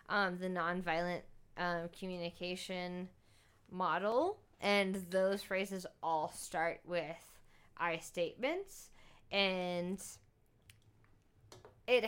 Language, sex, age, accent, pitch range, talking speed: English, female, 20-39, American, 180-225 Hz, 80 wpm